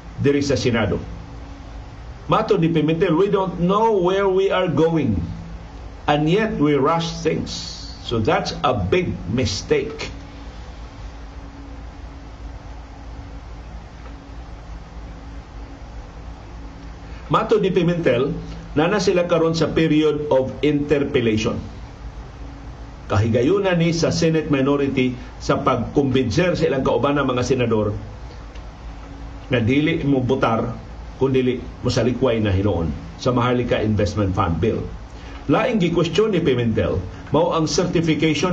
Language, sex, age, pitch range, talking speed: Filipino, male, 50-69, 95-150 Hz, 100 wpm